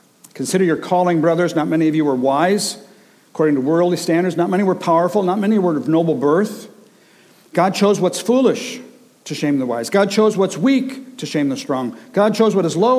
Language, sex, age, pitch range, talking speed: English, male, 60-79, 160-225 Hz, 210 wpm